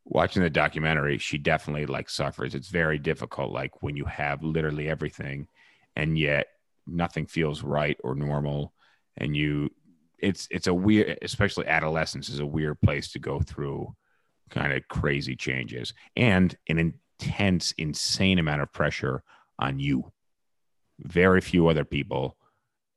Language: English